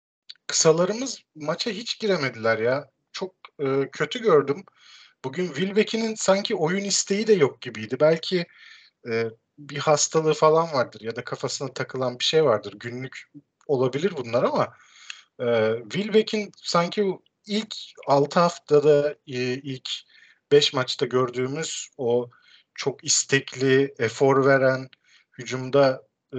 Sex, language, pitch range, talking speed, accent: male, Turkish, 125-180 Hz, 115 wpm, native